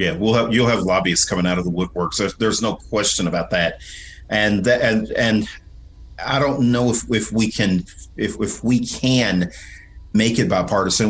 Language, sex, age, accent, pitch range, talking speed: English, male, 40-59, American, 85-105 Hz, 190 wpm